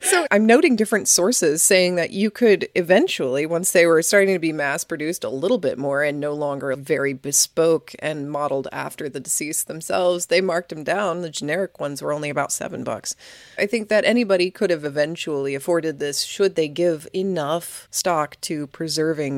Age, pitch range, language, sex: 30-49, 140-185 Hz, English, female